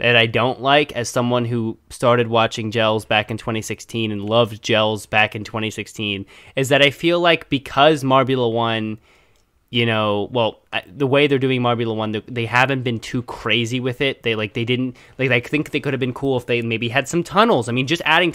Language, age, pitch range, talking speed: English, 20-39, 115-135 Hz, 220 wpm